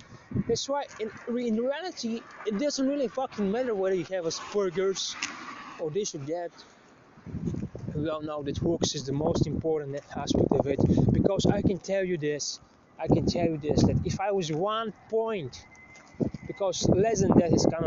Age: 20-39